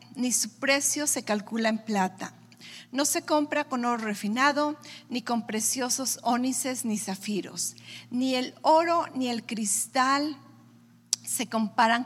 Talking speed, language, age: 135 wpm, Spanish, 50-69